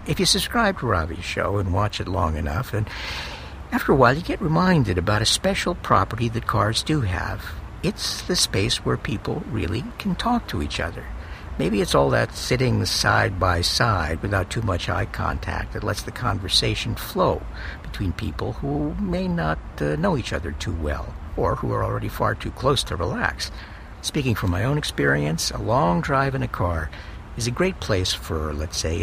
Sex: male